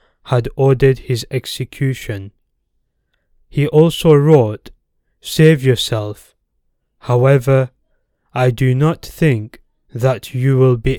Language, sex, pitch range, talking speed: English, male, 120-145 Hz, 100 wpm